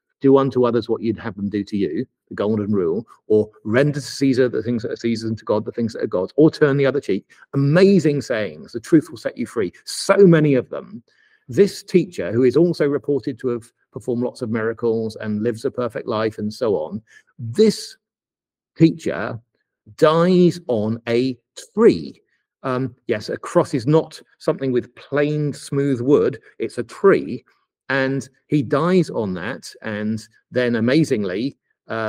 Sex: male